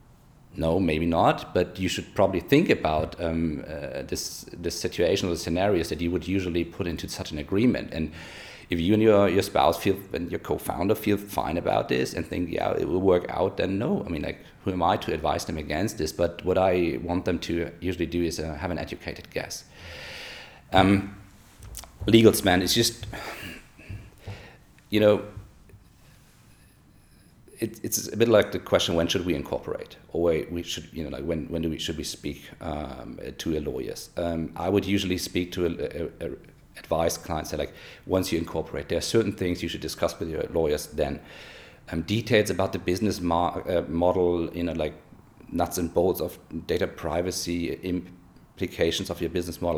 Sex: male